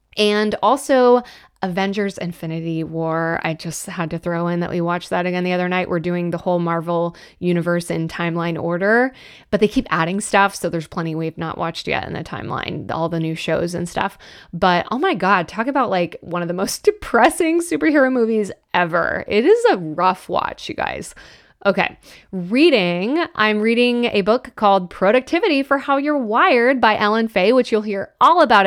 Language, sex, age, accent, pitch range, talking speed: English, female, 20-39, American, 175-245 Hz, 190 wpm